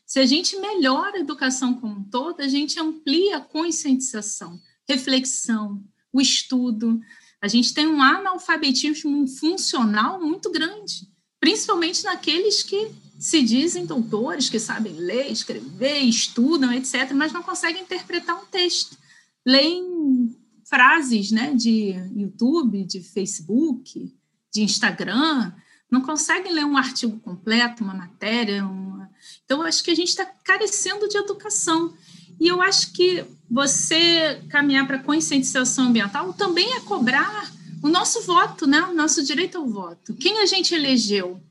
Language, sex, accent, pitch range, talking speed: Portuguese, female, Brazilian, 230-340 Hz, 140 wpm